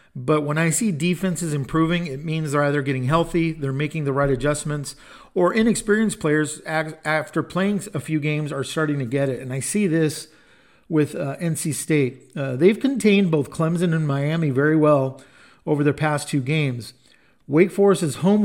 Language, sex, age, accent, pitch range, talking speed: English, male, 50-69, American, 140-170 Hz, 180 wpm